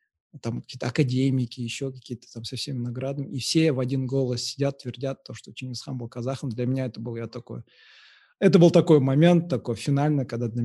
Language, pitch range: Russian, 125-145 Hz